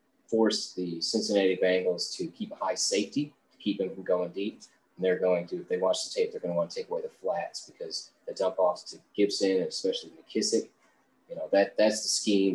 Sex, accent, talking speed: male, American, 230 wpm